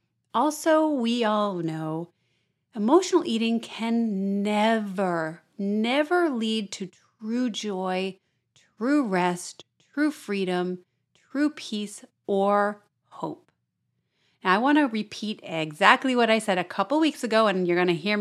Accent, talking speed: American, 125 wpm